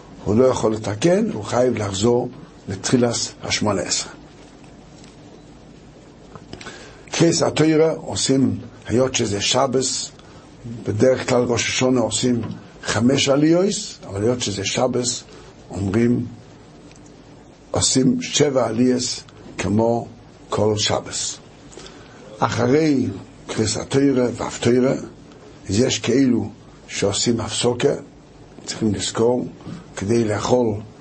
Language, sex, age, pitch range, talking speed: Hebrew, male, 60-79, 110-140 Hz, 90 wpm